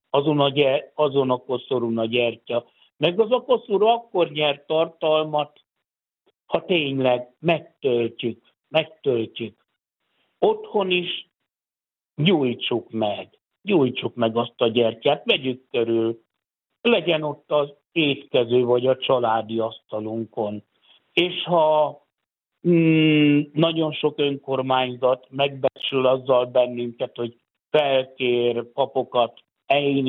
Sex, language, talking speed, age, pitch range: male, Hungarian, 100 wpm, 60-79, 125-160 Hz